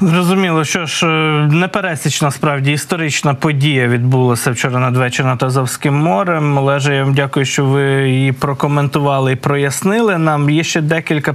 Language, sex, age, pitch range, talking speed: Ukrainian, male, 20-39, 130-155 Hz, 145 wpm